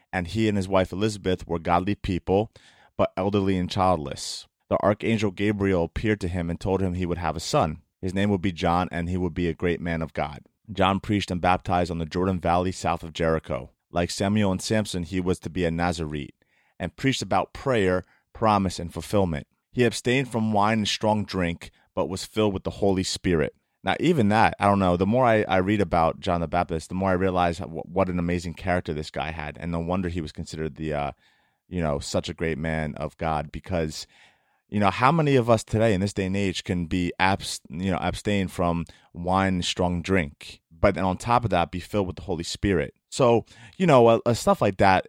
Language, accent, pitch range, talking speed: English, American, 85-100 Hz, 230 wpm